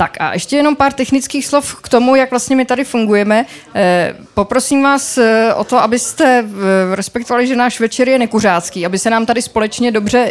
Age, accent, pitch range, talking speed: 20-39, native, 190-245 Hz, 180 wpm